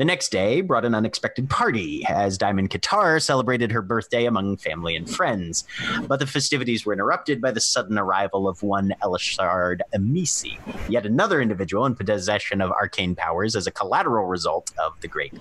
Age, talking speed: 30-49, 175 wpm